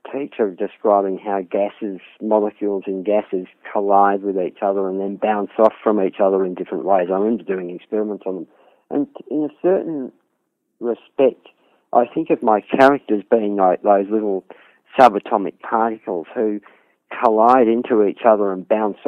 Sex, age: male, 50-69